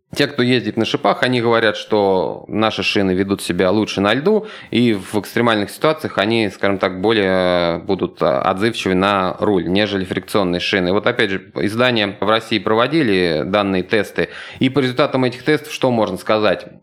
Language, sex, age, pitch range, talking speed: Russian, male, 20-39, 100-125 Hz, 170 wpm